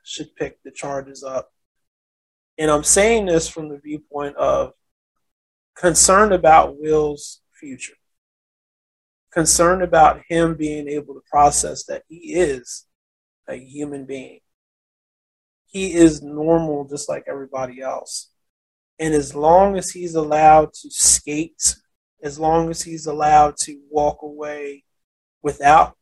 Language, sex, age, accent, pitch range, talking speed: English, male, 30-49, American, 135-160 Hz, 125 wpm